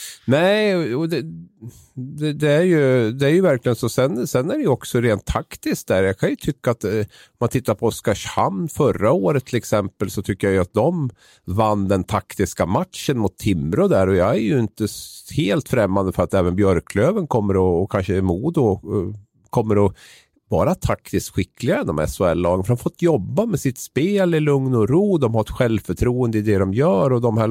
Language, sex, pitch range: Swedish, male, 95-125 Hz